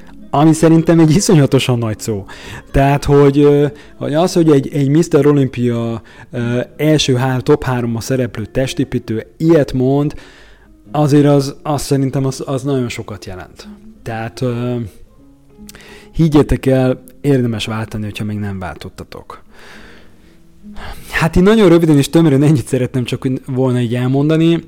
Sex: male